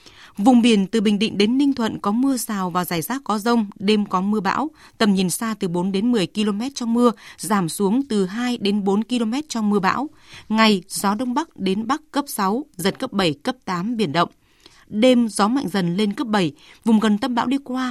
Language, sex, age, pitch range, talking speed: Vietnamese, female, 20-39, 195-245 Hz, 230 wpm